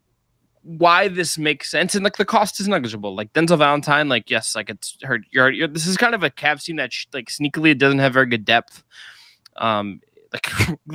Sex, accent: male, American